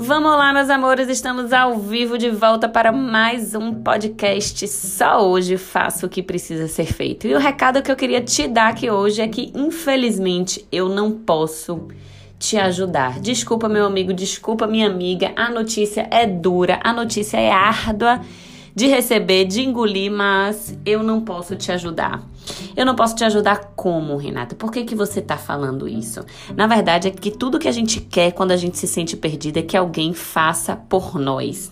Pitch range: 180-225 Hz